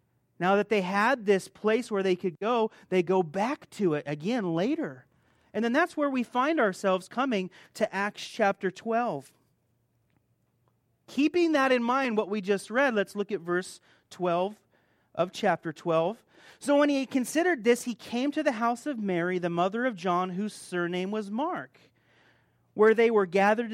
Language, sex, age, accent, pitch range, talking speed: English, male, 30-49, American, 180-250 Hz, 175 wpm